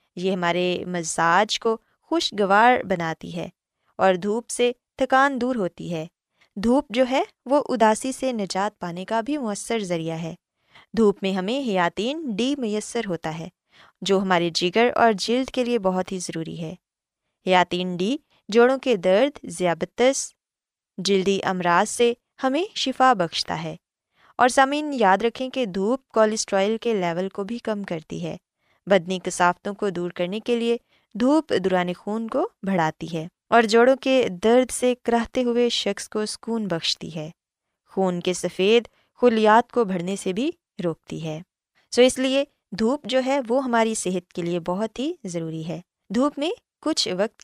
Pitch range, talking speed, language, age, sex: 180-245 Hz, 160 wpm, Urdu, 20-39, female